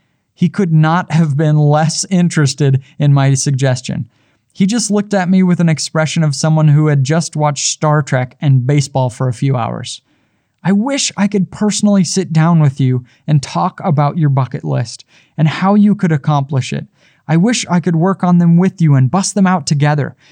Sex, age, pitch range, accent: male, 20-39, 145-195 Hz, American